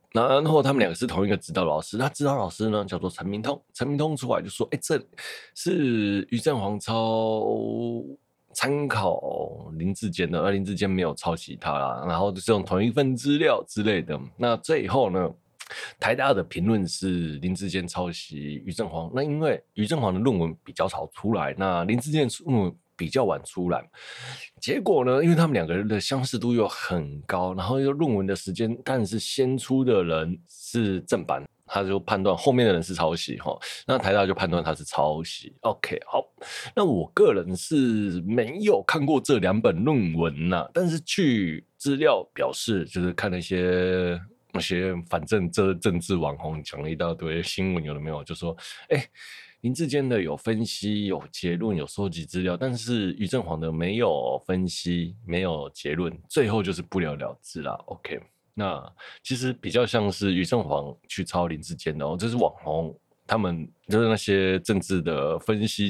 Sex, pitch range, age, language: male, 90-120 Hz, 20-39, Chinese